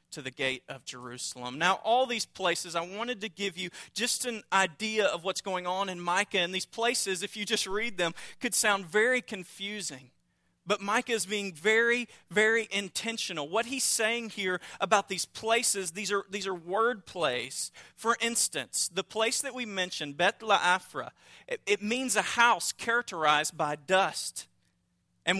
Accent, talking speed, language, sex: American, 170 wpm, English, male